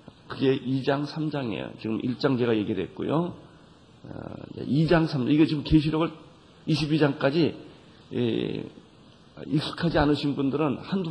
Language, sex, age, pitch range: Korean, male, 40-59, 125-155 Hz